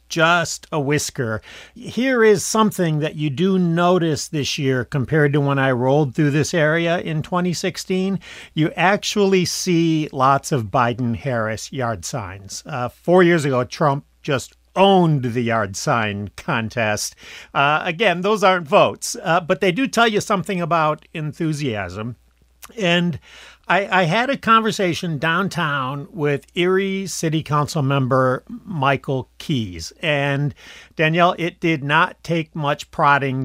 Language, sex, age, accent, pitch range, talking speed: English, male, 50-69, American, 125-170 Hz, 140 wpm